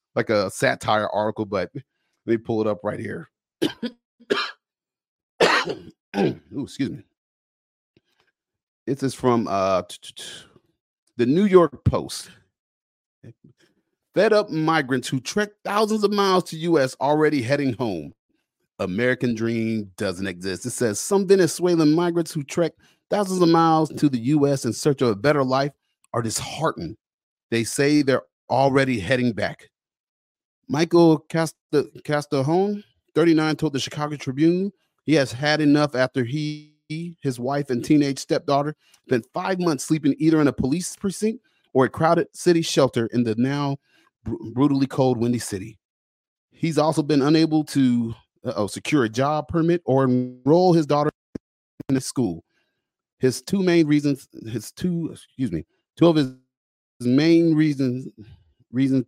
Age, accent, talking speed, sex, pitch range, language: 30-49, American, 140 wpm, male, 125-165 Hz, English